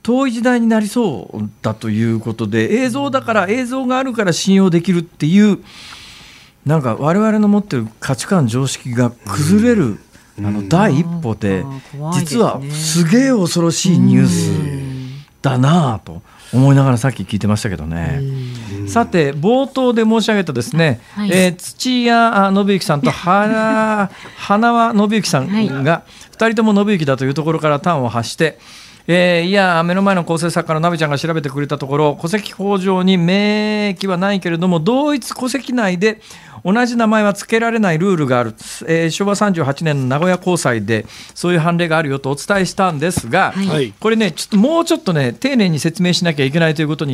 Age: 50-69